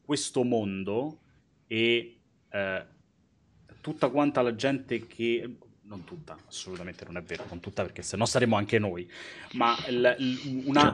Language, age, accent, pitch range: Italian, 30-49, native, 105-130 Hz